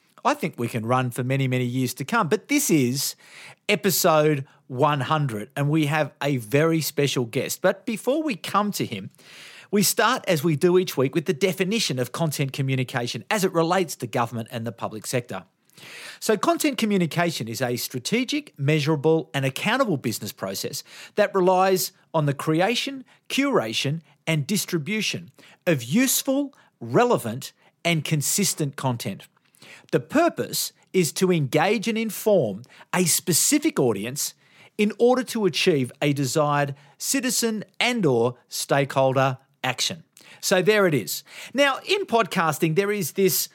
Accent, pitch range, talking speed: Australian, 140-205 Hz, 145 wpm